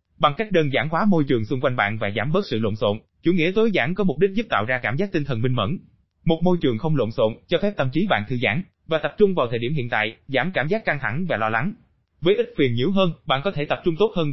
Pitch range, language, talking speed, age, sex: 125-180 Hz, Vietnamese, 305 wpm, 20-39, male